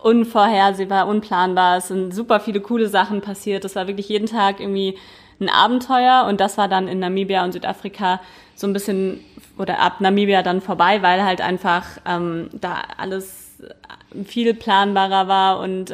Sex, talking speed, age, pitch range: female, 160 wpm, 20-39, 190-210 Hz